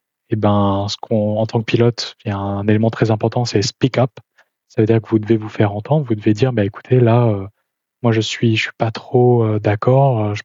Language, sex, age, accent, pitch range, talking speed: French, male, 20-39, French, 105-120 Hz, 275 wpm